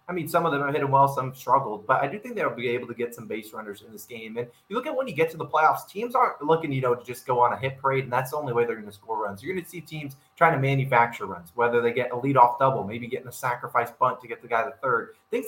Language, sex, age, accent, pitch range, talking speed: English, male, 20-39, American, 120-165 Hz, 330 wpm